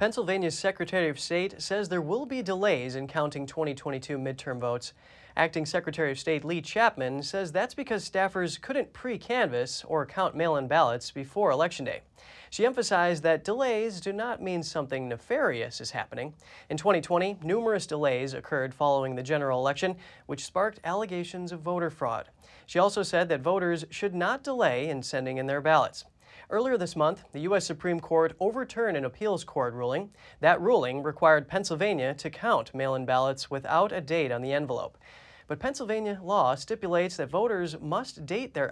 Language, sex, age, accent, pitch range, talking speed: English, male, 30-49, American, 140-195 Hz, 165 wpm